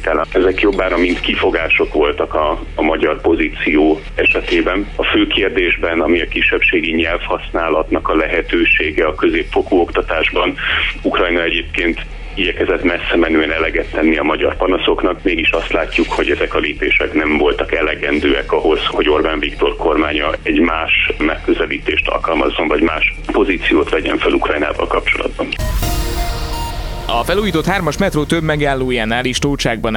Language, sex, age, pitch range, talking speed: Hungarian, male, 30-49, 130-195 Hz, 130 wpm